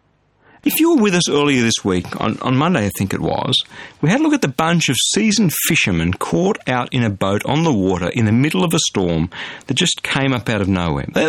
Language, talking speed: English, 245 wpm